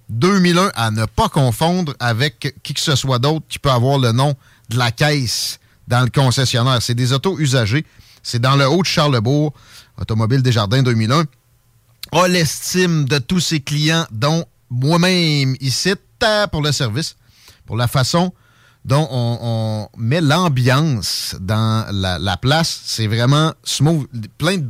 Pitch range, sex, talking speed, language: 120-160 Hz, male, 155 wpm, French